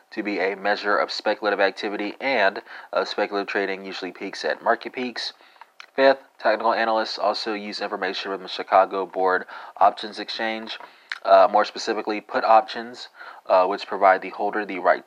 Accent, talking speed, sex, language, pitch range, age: American, 160 wpm, male, English, 100-115 Hz, 30-49